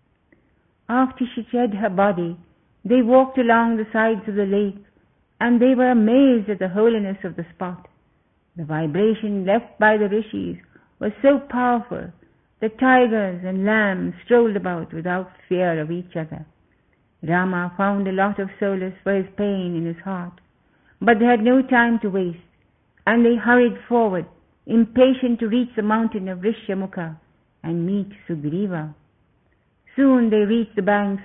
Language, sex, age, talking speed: English, female, 50-69, 155 wpm